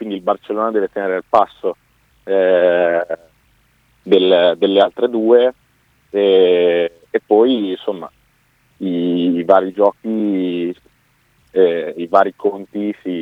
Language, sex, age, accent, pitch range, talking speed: Italian, male, 30-49, native, 95-120 Hz, 115 wpm